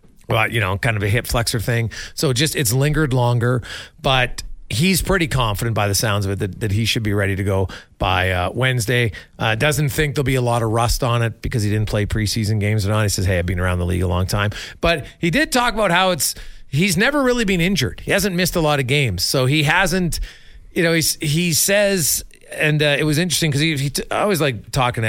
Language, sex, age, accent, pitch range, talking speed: English, male, 40-59, American, 115-160 Hz, 250 wpm